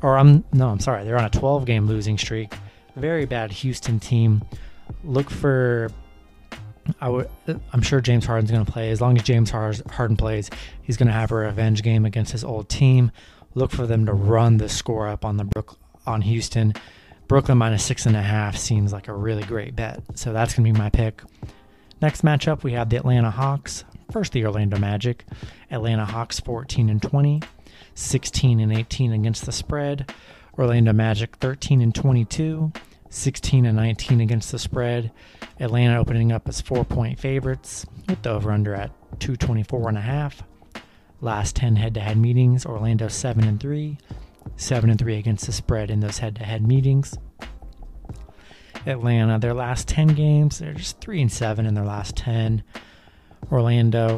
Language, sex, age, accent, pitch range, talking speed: English, male, 30-49, American, 110-130 Hz, 175 wpm